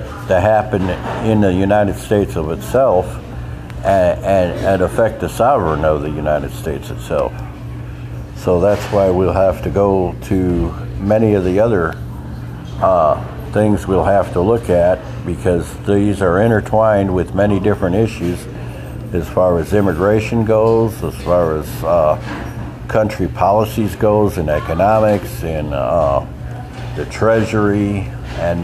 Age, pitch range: 60-79, 85-110 Hz